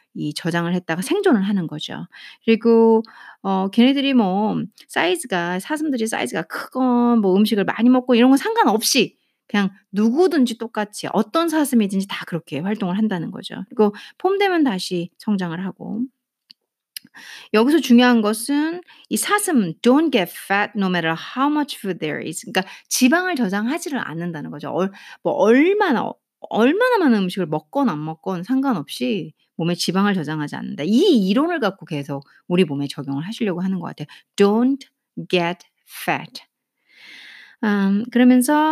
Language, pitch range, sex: Korean, 185-265 Hz, female